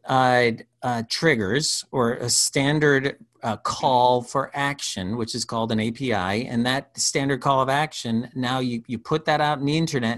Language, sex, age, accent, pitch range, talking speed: English, male, 40-59, American, 105-130 Hz, 175 wpm